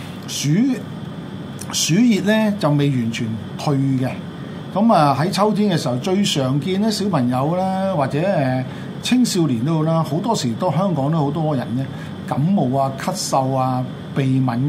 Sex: male